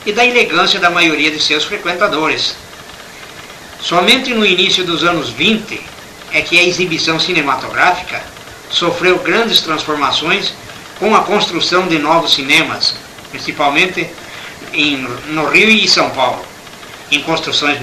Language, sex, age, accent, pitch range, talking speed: Portuguese, male, 60-79, Brazilian, 155-205 Hz, 120 wpm